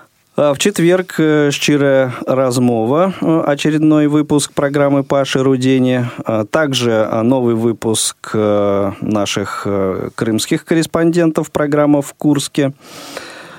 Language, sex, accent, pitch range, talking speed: Russian, male, native, 110-145 Hz, 80 wpm